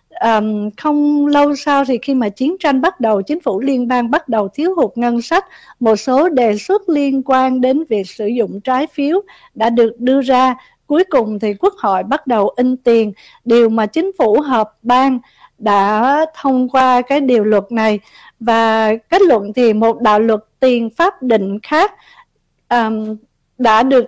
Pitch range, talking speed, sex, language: 215-275 Hz, 175 wpm, female, Vietnamese